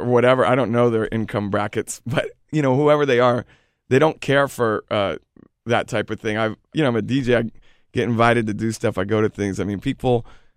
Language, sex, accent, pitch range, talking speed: English, male, American, 115-135 Hz, 235 wpm